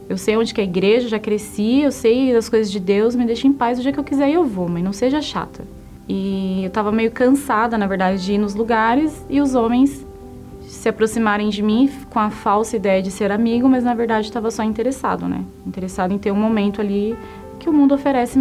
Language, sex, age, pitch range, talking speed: Portuguese, female, 20-39, 205-245 Hz, 240 wpm